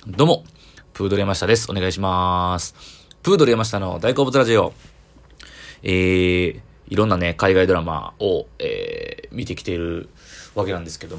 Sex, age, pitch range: male, 20-39, 80-100 Hz